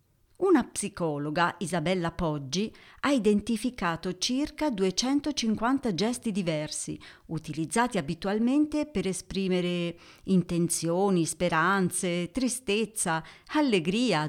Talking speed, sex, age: 75 wpm, female, 40-59